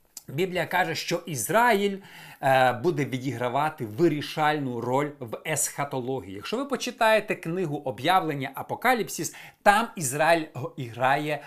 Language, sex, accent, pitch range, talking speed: Ukrainian, male, native, 140-190 Hz, 110 wpm